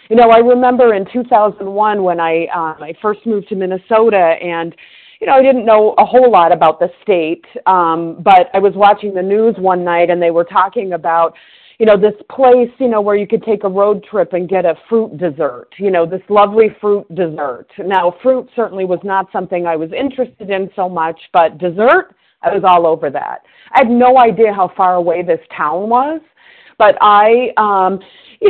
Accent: American